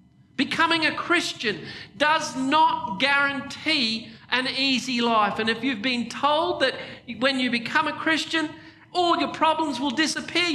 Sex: male